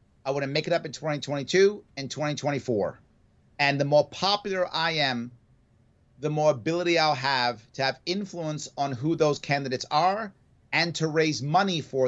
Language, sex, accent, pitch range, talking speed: English, male, American, 130-165 Hz, 165 wpm